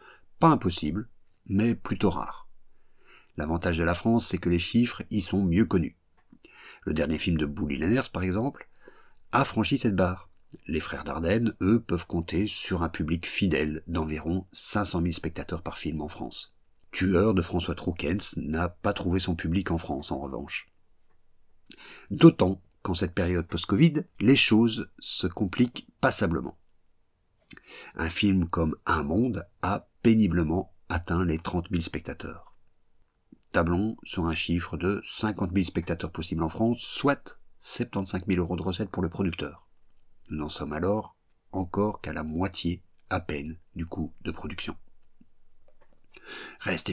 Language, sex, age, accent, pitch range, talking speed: French, male, 50-69, French, 85-100 Hz, 150 wpm